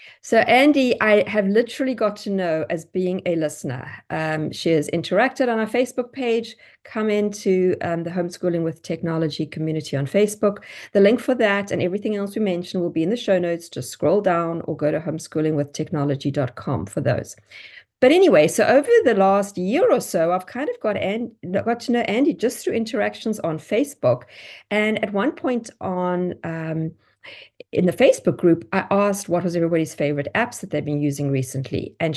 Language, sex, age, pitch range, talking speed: English, female, 50-69, 160-215 Hz, 185 wpm